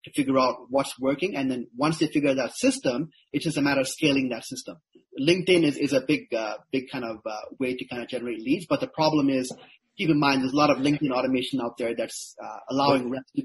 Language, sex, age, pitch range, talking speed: English, male, 30-49, 125-155 Hz, 245 wpm